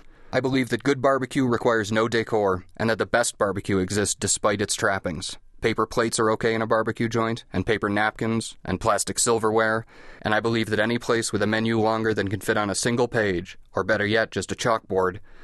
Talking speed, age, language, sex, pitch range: 210 wpm, 30-49, English, male, 95-115 Hz